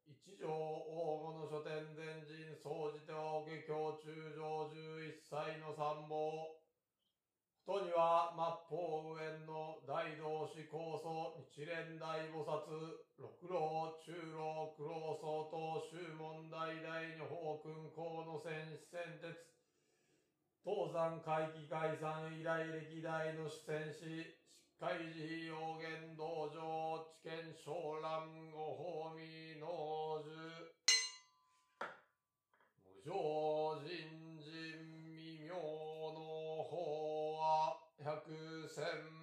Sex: male